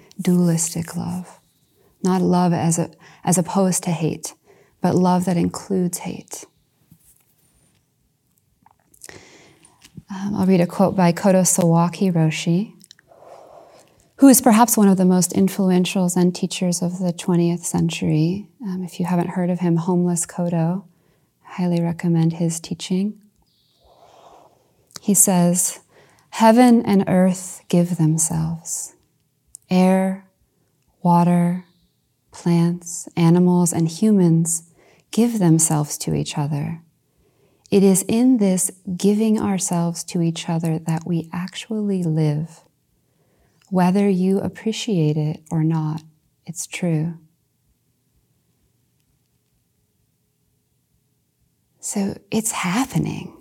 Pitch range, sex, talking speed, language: 165-190 Hz, female, 105 wpm, English